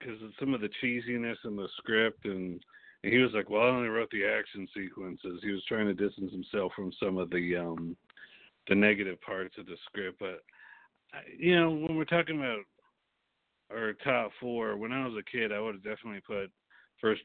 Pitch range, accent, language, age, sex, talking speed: 95-110 Hz, American, English, 40-59, male, 205 wpm